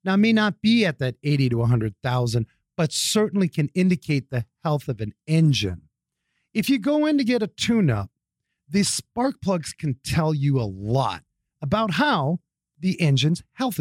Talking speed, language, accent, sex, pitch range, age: 180 wpm, English, American, male, 130-205 Hz, 40-59